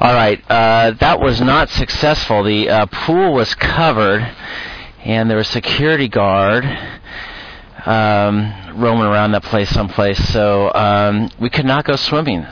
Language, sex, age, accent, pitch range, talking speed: English, male, 40-59, American, 100-125 Hz, 140 wpm